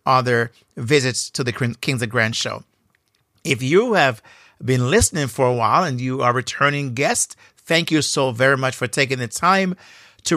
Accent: American